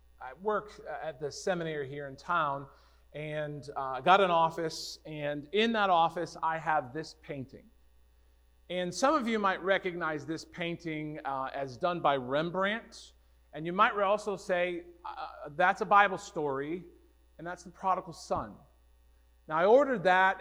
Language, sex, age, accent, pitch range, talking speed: English, male, 40-59, American, 145-185 Hz, 155 wpm